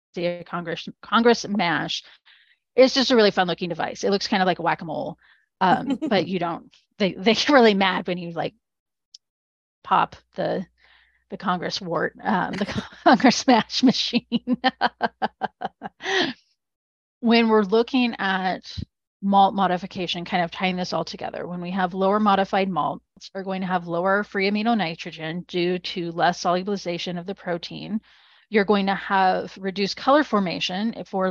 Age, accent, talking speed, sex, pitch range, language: 30-49, American, 155 wpm, female, 175-210 Hz, English